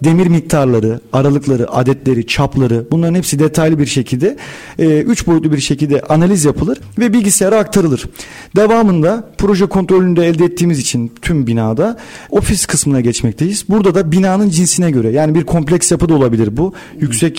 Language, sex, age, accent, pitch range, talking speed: Turkish, male, 40-59, native, 140-185 Hz, 150 wpm